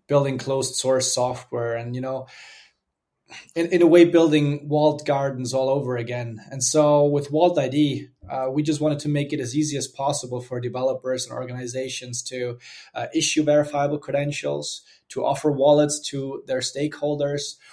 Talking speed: 160 wpm